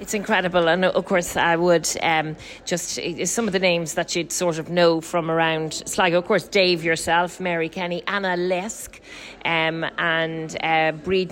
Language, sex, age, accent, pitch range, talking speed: English, female, 40-59, Irish, 170-210 Hz, 175 wpm